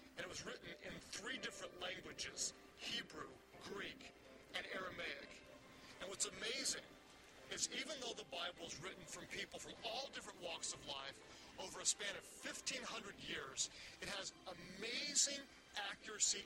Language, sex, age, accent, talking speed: English, male, 40-59, American, 145 wpm